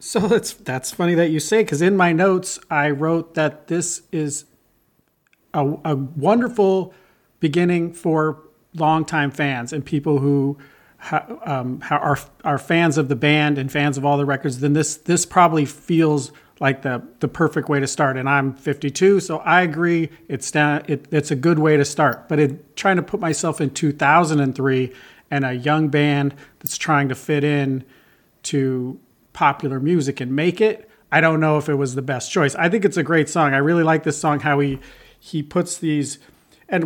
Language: English